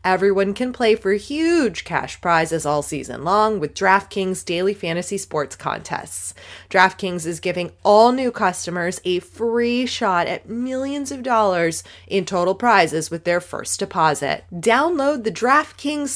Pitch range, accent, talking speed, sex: 185-250 Hz, American, 145 wpm, female